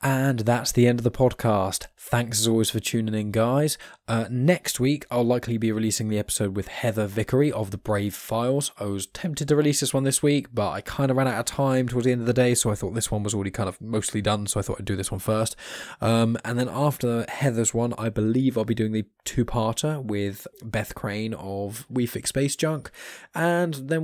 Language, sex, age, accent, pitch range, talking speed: English, male, 10-29, British, 105-125 Hz, 235 wpm